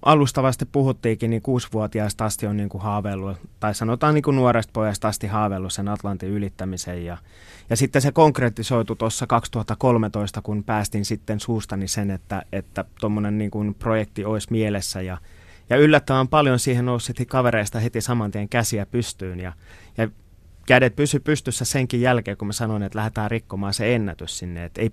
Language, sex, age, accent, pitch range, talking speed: Finnish, male, 30-49, native, 95-115 Hz, 160 wpm